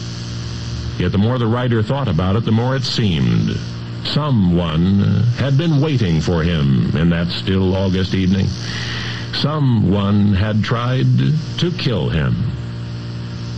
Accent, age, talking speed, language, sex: American, 60-79, 130 wpm, English, male